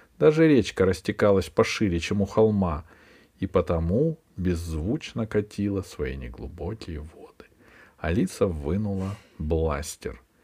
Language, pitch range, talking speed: Russian, 85-115 Hz, 100 wpm